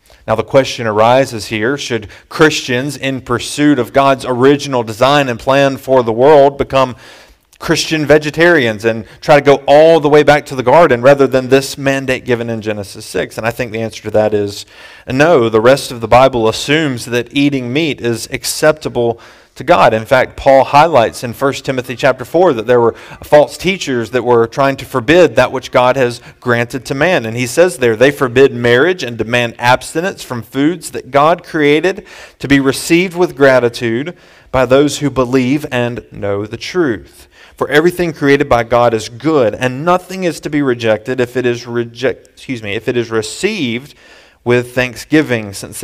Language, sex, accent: English, male, American